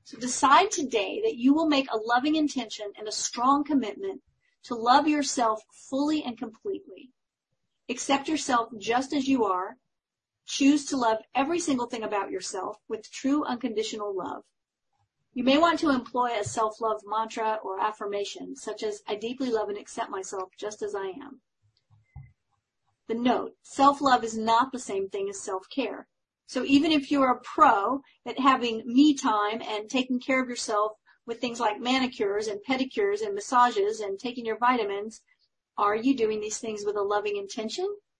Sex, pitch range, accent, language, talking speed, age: female, 215-280 Hz, American, English, 165 wpm, 40-59